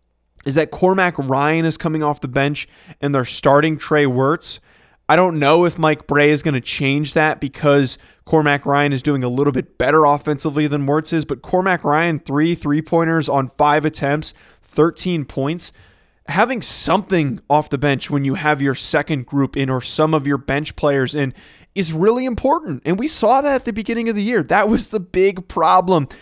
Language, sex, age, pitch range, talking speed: English, male, 20-39, 140-180 Hz, 195 wpm